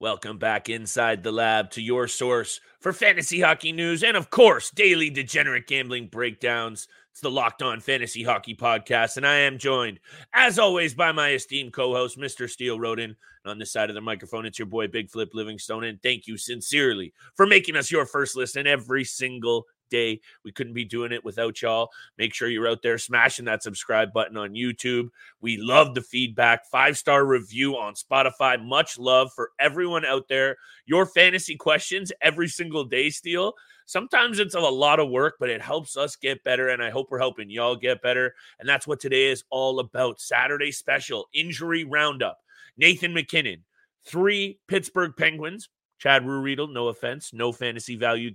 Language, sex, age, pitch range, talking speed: English, male, 30-49, 115-165 Hz, 180 wpm